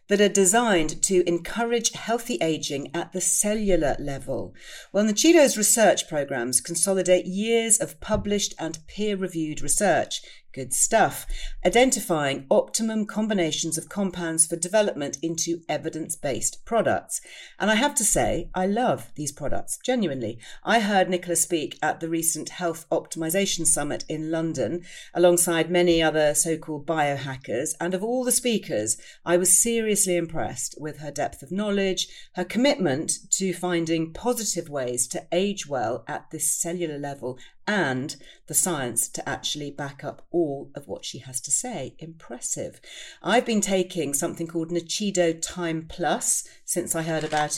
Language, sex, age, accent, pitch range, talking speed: English, female, 40-59, British, 155-200 Hz, 150 wpm